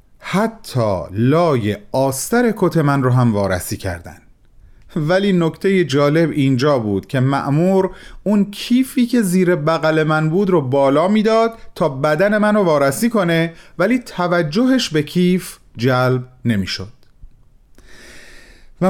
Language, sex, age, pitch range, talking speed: Persian, male, 30-49, 115-180 Hz, 120 wpm